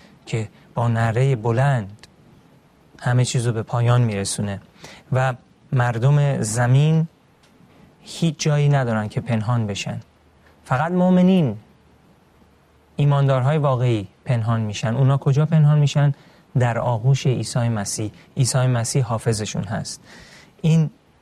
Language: Persian